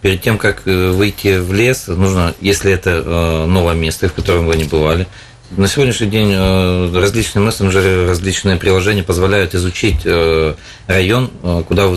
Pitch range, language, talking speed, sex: 90-105 Hz, Russian, 160 wpm, male